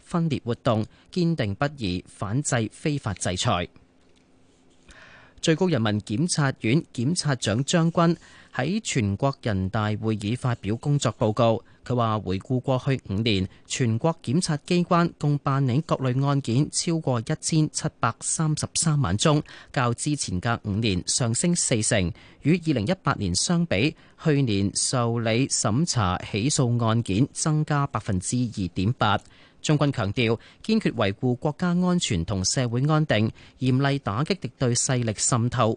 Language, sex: Chinese, male